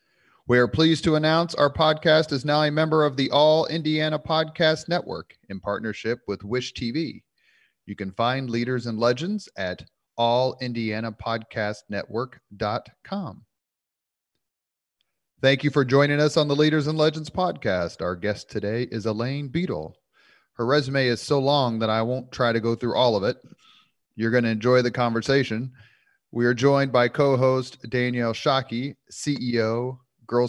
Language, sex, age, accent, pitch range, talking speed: English, male, 30-49, American, 110-135 Hz, 150 wpm